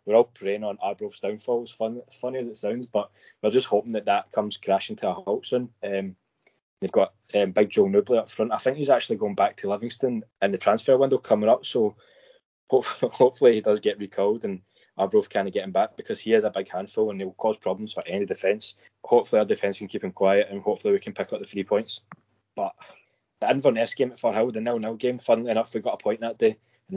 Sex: male